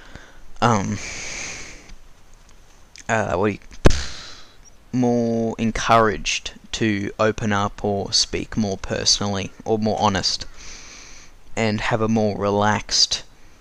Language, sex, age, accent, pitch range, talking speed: English, male, 10-29, Australian, 100-115 Hz, 95 wpm